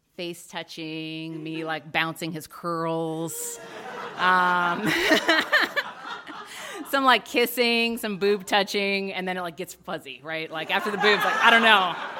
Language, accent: English, American